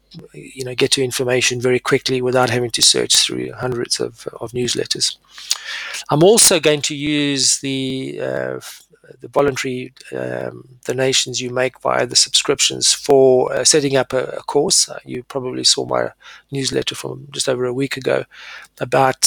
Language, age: English, 40-59